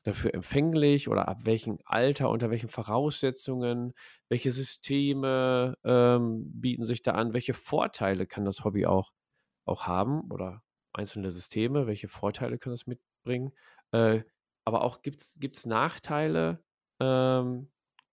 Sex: male